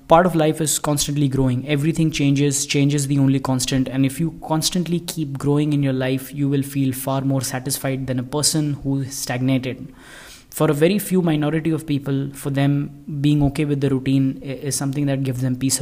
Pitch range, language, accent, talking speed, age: 135-155 Hz, English, Indian, 205 wpm, 20-39